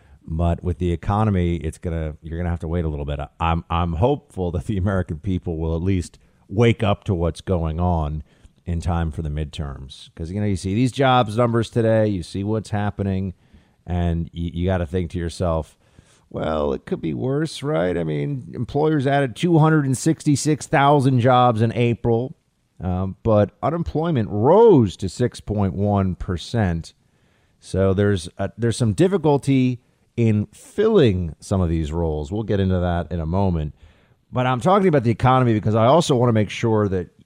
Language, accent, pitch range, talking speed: English, American, 85-125 Hz, 190 wpm